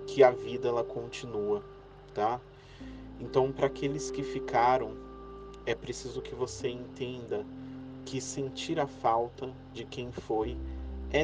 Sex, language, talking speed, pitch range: male, Portuguese, 130 wpm, 100-135 Hz